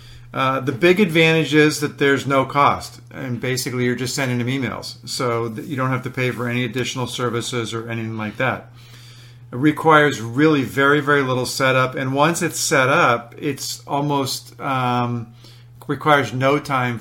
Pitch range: 120-135 Hz